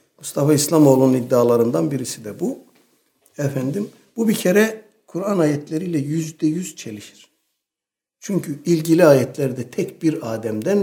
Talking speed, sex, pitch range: 115 wpm, male, 140-190 Hz